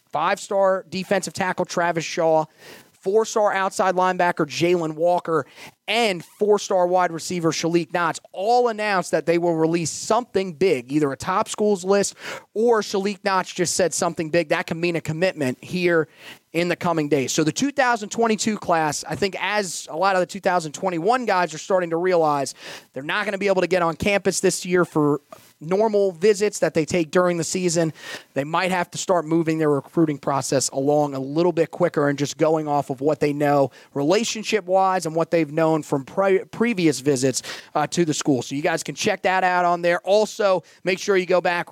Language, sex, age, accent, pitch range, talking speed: English, male, 30-49, American, 155-195 Hz, 195 wpm